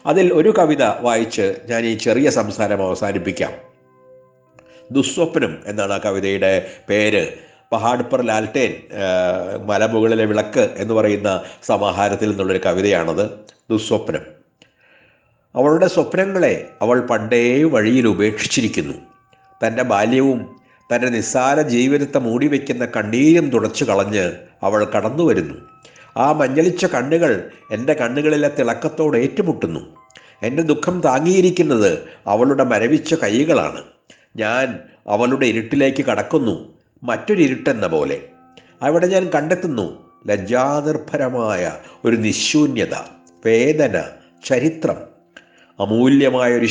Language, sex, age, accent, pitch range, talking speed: Malayalam, male, 60-79, native, 110-155 Hz, 85 wpm